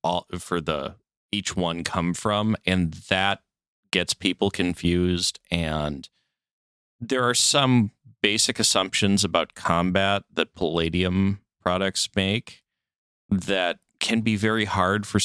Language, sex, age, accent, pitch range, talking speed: English, male, 30-49, American, 90-110 Hz, 120 wpm